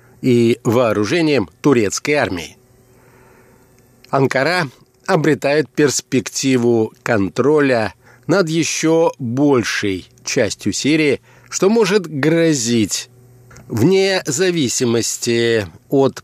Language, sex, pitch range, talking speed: Russian, male, 120-150 Hz, 70 wpm